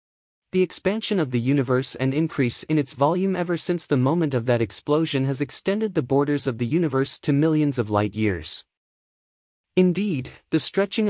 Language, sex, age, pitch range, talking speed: English, male, 30-49, 125-165 Hz, 175 wpm